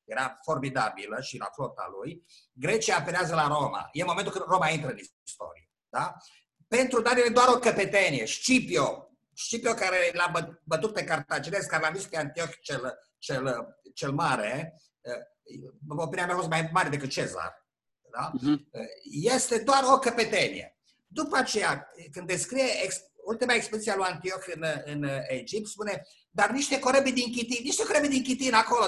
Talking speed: 160 wpm